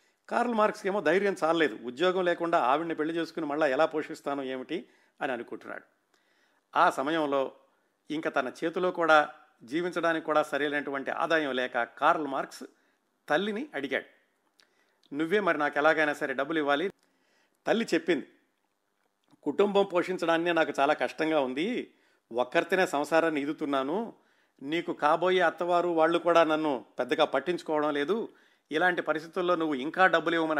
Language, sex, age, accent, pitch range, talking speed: Telugu, male, 50-69, native, 145-180 Hz, 125 wpm